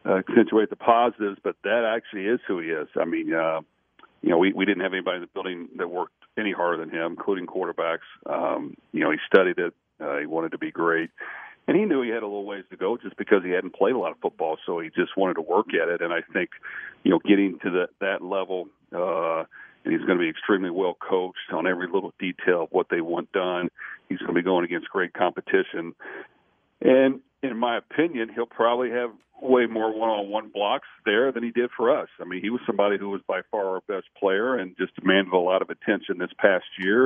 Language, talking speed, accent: English, 235 wpm, American